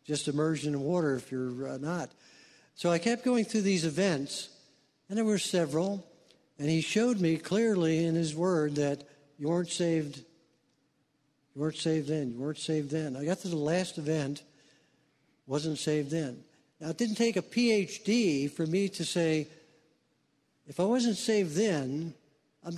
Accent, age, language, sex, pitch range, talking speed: American, 60-79, English, male, 150-185 Hz, 170 wpm